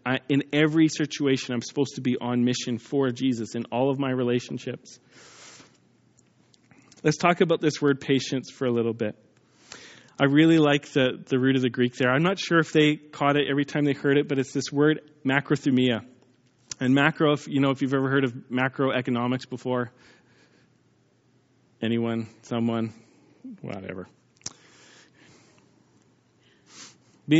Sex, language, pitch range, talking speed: male, English, 120-150 Hz, 150 wpm